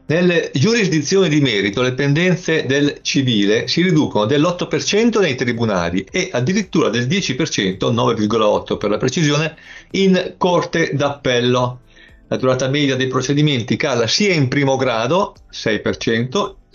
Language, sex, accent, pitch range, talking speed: Italian, male, native, 120-160 Hz, 125 wpm